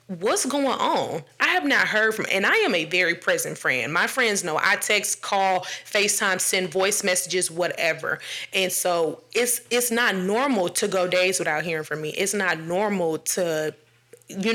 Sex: female